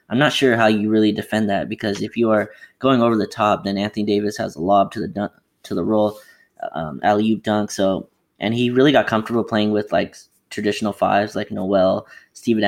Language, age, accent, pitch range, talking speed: English, 20-39, American, 100-110 Hz, 215 wpm